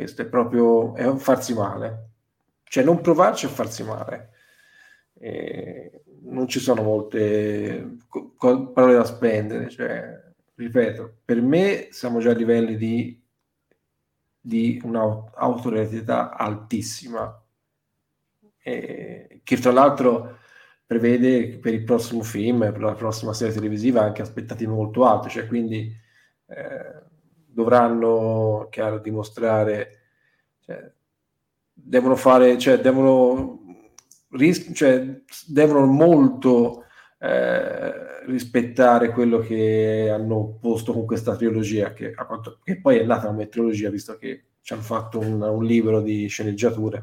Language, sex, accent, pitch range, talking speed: Italian, male, native, 110-130 Hz, 115 wpm